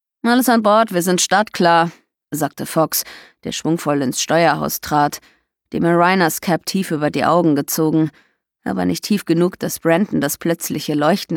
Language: German